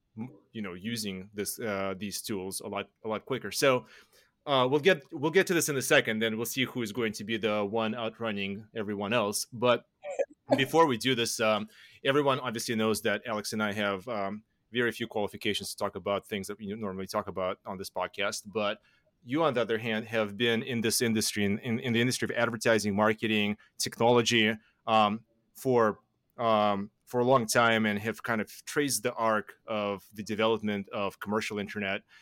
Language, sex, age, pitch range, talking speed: English, male, 30-49, 100-115 Hz, 195 wpm